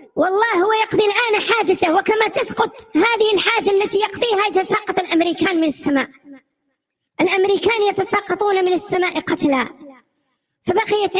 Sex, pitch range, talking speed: male, 290-380 Hz, 115 wpm